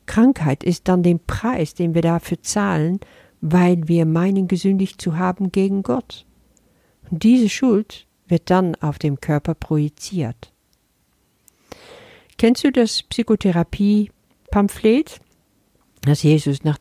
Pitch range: 150-195 Hz